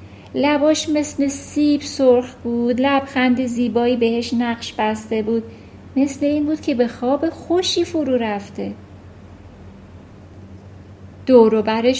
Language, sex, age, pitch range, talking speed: Persian, female, 40-59, 185-290 Hz, 105 wpm